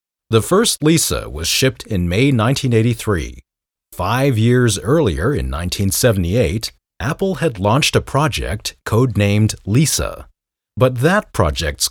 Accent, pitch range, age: American, 90-135 Hz, 40-59